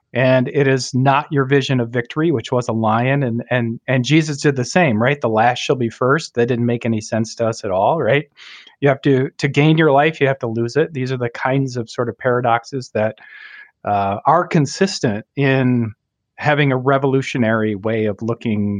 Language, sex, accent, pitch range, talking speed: English, male, American, 115-140 Hz, 210 wpm